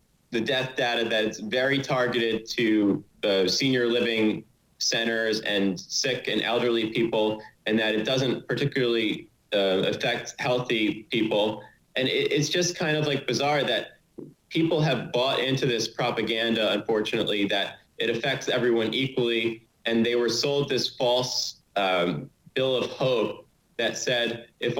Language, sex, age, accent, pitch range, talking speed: English, male, 30-49, American, 110-125 Hz, 140 wpm